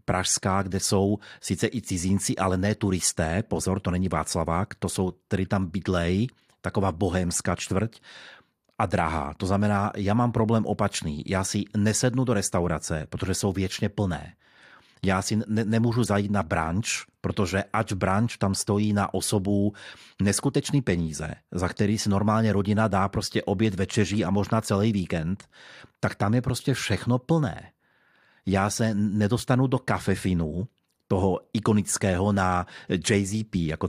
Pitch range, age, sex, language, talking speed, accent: 95-110 Hz, 30-49, male, Czech, 150 wpm, native